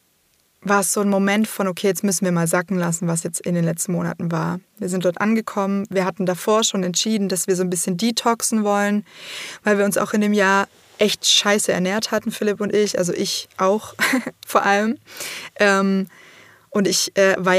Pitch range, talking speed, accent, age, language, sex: 180-210 Hz, 200 wpm, German, 20-39, German, female